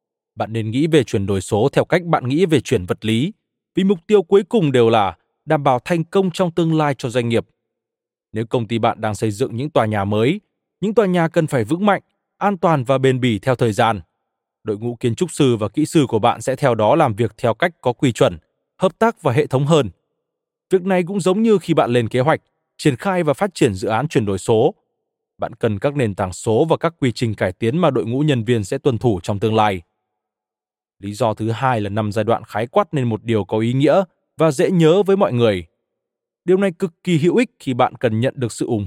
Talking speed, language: 250 wpm, Vietnamese